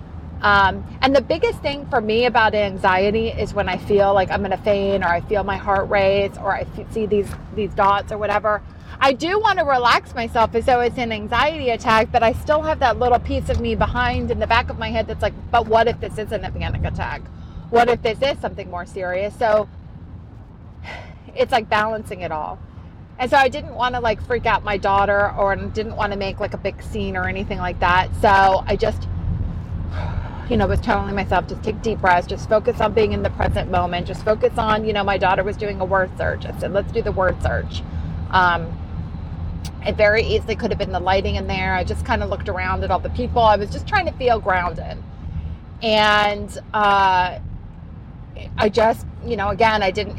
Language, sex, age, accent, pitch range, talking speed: English, female, 30-49, American, 175-225 Hz, 220 wpm